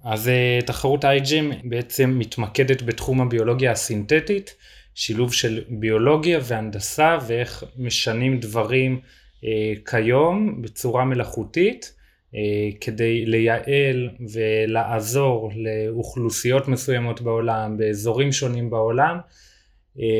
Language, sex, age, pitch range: Hebrew, male, 20-39, 110-135 Hz